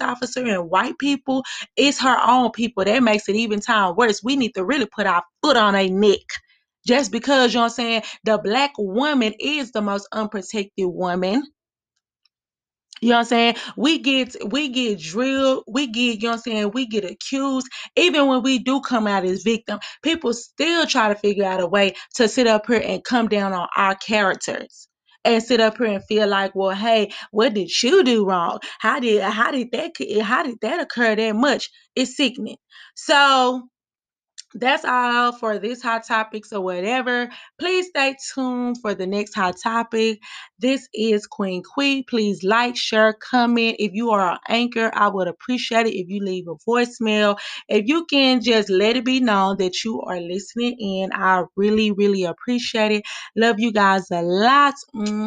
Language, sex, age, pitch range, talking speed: English, female, 20-39, 205-255 Hz, 190 wpm